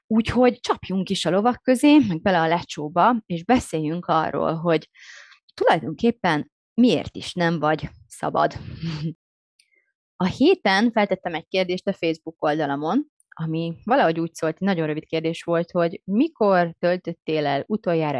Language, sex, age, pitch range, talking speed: Hungarian, female, 20-39, 160-185 Hz, 140 wpm